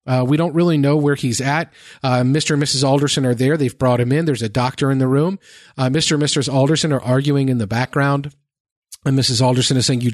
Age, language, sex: 40-59, English, male